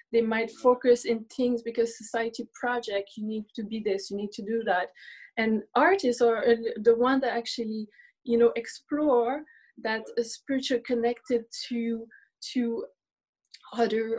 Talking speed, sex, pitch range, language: 150 wpm, female, 215-250 Hz, English